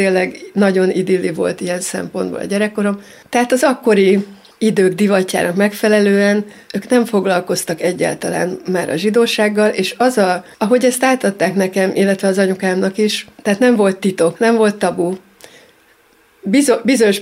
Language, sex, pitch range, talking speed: Hungarian, female, 185-210 Hz, 140 wpm